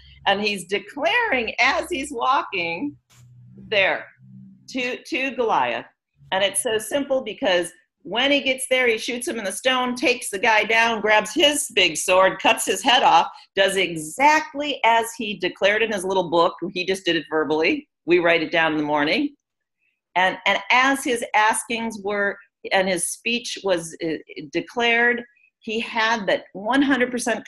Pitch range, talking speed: 185-255 Hz, 160 wpm